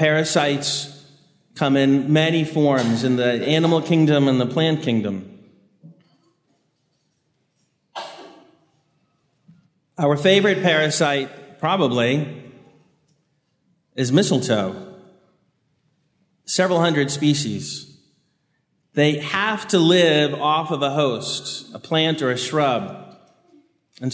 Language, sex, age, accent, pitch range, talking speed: English, male, 40-59, American, 135-170 Hz, 90 wpm